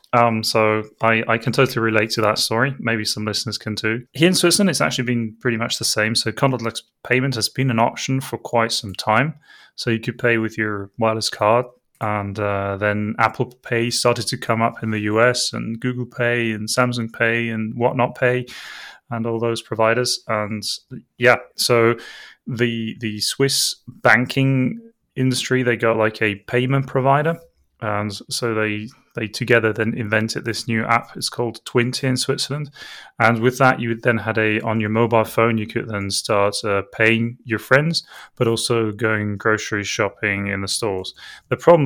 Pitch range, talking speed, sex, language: 110-125 Hz, 180 wpm, male, English